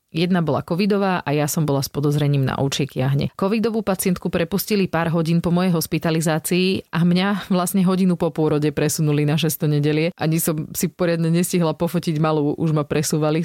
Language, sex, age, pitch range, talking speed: Slovak, female, 30-49, 150-185 Hz, 180 wpm